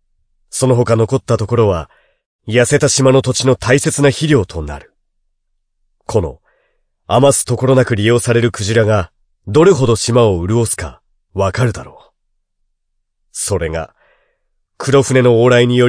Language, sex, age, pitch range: Japanese, male, 40-59, 105-145 Hz